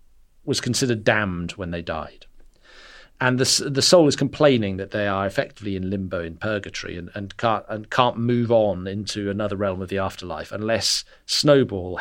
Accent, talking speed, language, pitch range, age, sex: British, 175 wpm, English, 100-130 Hz, 40-59, male